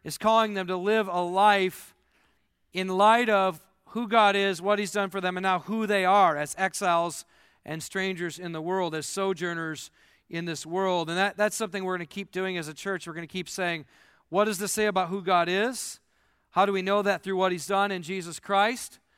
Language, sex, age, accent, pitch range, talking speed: English, male, 40-59, American, 170-195 Hz, 220 wpm